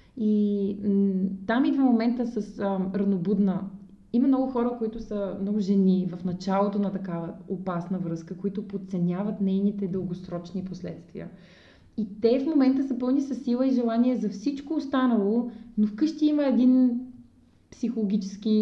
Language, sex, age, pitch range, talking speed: Bulgarian, female, 20-39, 190-225 Hz, 135 wpm